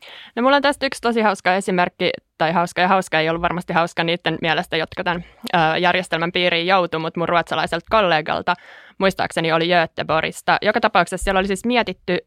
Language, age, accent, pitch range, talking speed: Finnish, 20-39, native, 170-215 Hz, 175 wpm